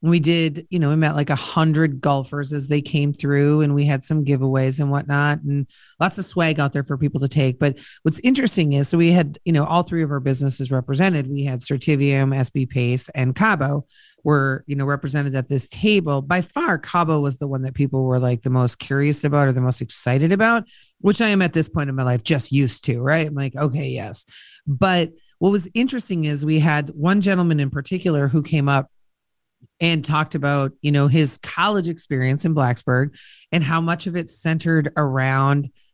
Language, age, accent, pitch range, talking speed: English, 40-59, American, 140-165 Hz, 210 wpm